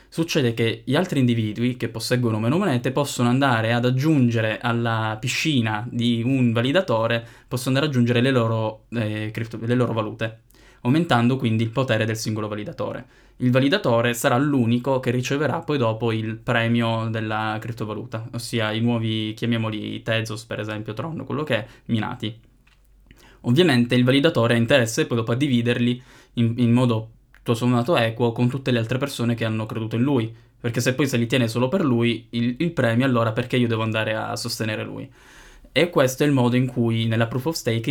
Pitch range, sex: 115-125 Hz, male